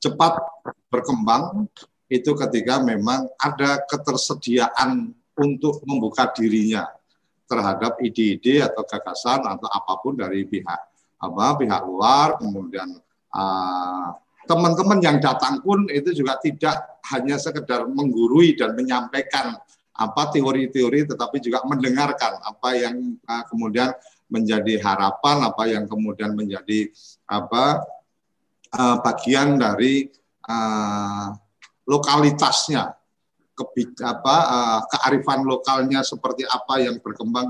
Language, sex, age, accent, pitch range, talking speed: Indonesian, male, 50-69, native, 110-140 Hz, 100 wpm